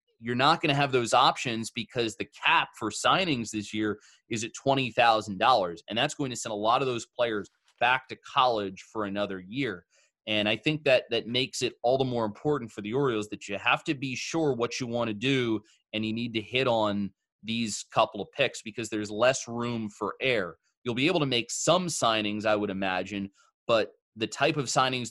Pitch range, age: 105-125 Hz, 30-49